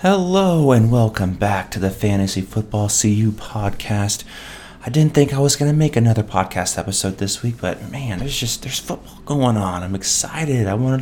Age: 30-49